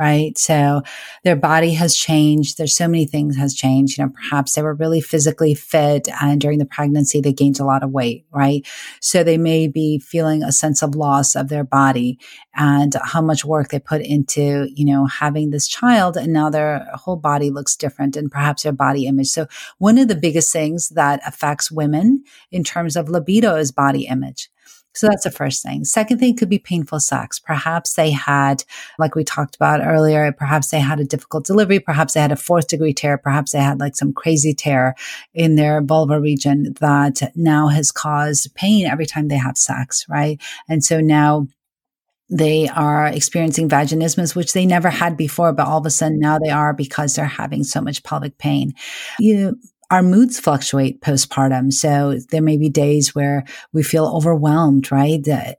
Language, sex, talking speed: English, female, 195 wpm